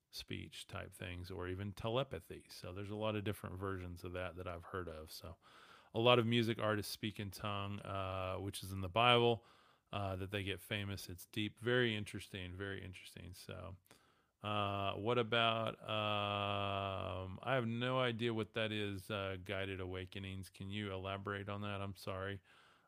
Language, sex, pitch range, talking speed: English, male, 95-110 Hz, 175 wpm